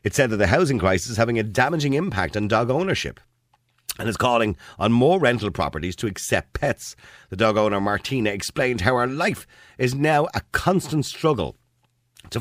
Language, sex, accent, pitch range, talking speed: English, male, Irish, 80-120 Hz, 185 wpm